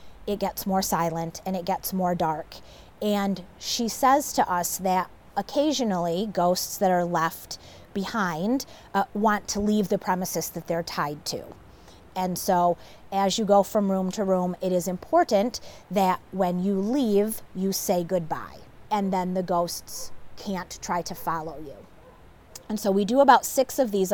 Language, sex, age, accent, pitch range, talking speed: English, female, 30-49, American, 180-210 Hz, 165 wpm